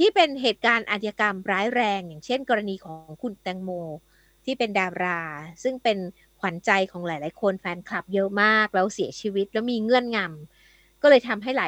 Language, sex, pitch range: Thai, female, 200-285 Hz